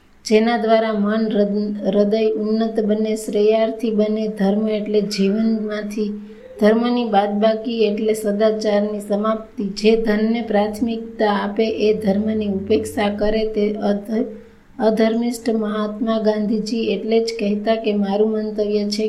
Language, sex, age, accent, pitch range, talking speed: Gujarati, female, 20-39, native, 205-220 Hz, 115 wpm